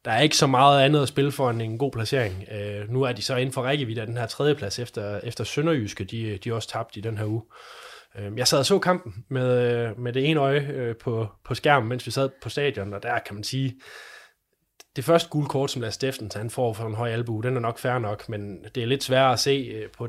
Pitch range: 110-130 Hz